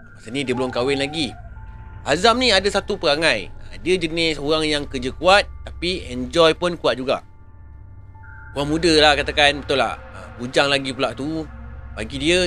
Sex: male